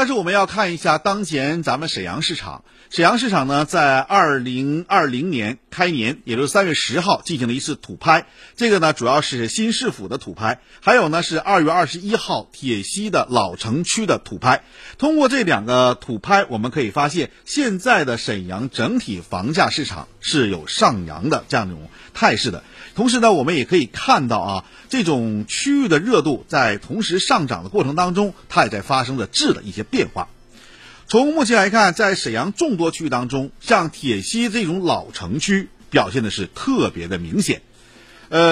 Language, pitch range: Chinese, 130-215 Hz